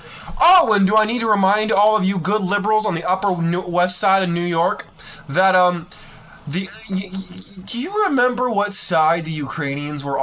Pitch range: 170-250 Hz